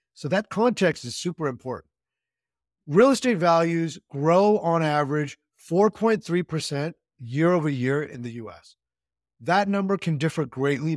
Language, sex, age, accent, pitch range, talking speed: English, male, 50-69, American, 135-180 Hz, 130 wpm